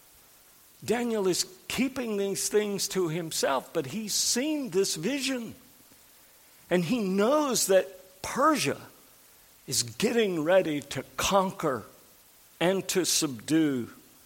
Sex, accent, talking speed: male, American, 105 wpm